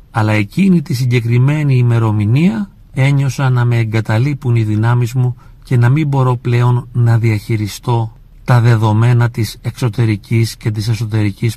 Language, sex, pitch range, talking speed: Greek, male, 110-130 Hz, 135 wpm